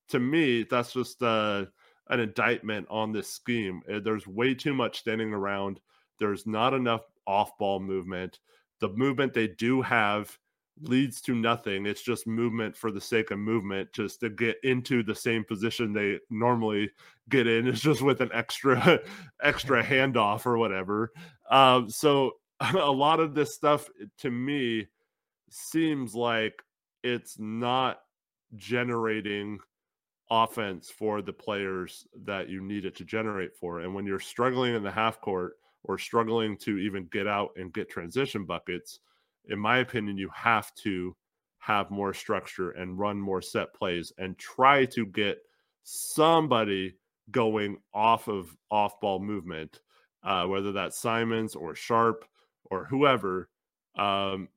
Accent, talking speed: American, 145 wpm